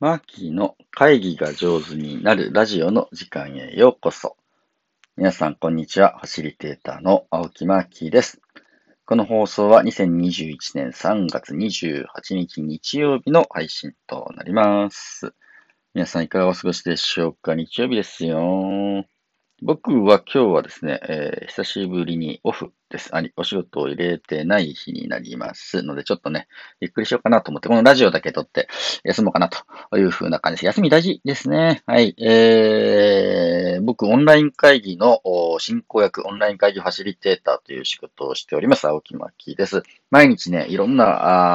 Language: Japanese